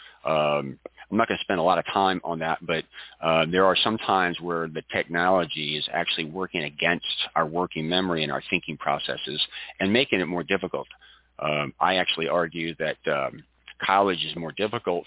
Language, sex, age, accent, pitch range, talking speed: English, male, 40-59, American, 80-90 Hz, 185 wpm